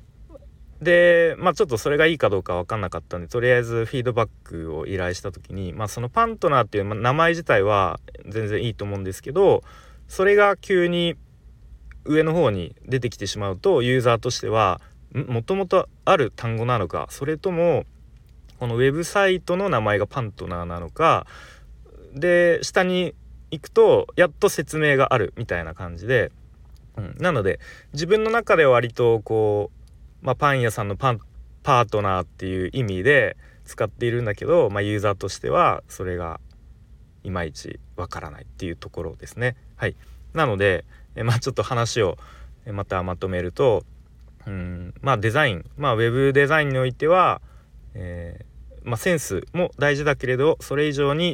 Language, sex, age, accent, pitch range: Japanese, male, 30-49, native, 90-150 Hz